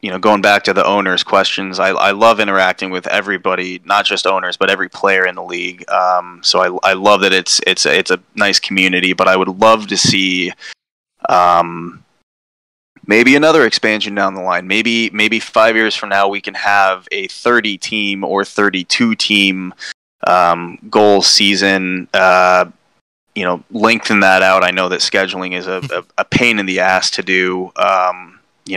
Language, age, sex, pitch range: English, 20-39, male, 90-105 Hz